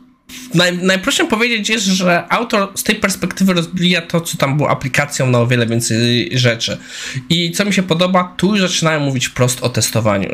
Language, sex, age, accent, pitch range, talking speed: Polish, male, 20-39, native, 125-175 Hz, 185 wpm